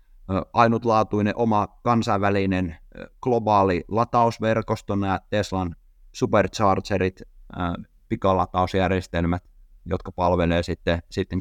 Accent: native